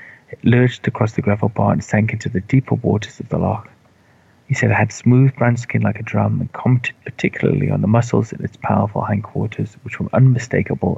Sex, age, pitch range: male, 30-49, 100-120 Hz